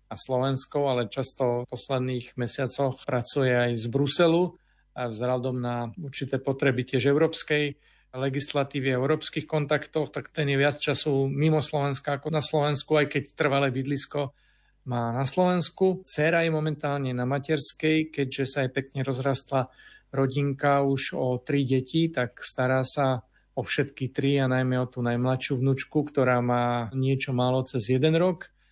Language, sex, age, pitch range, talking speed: Slovak, male, 40-59, 125-145 Hz, 155 wpm